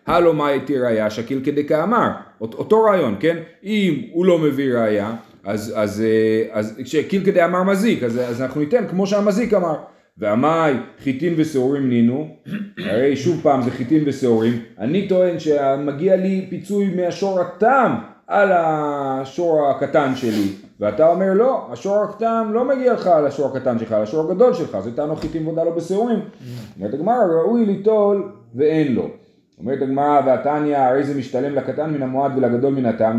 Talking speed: 150 wpm